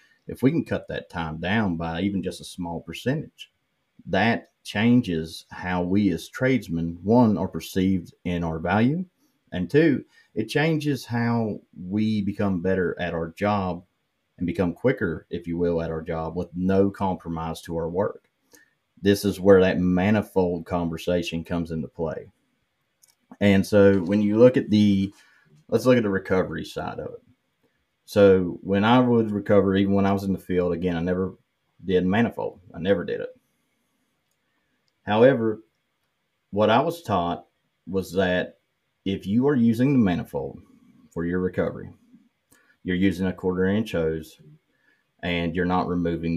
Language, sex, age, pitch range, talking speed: English, male, 30-49, 85-105 Hz, 155 wpm